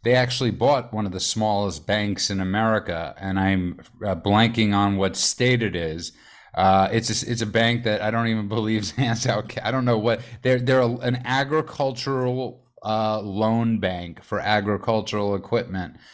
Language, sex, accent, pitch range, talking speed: English, male, American, 100-120 Hz, 170 wpm